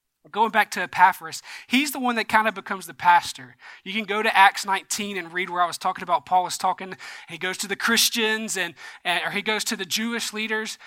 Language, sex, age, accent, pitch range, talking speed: English, male, 20-39, American, 175-220 Hz, 235 wpm